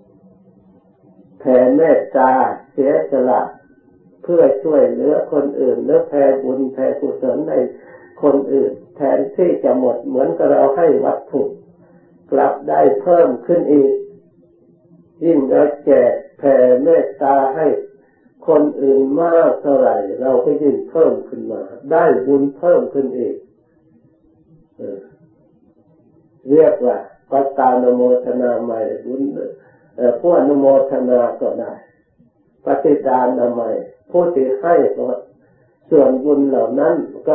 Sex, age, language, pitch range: male, 60-79, Thai, 125-165 Hz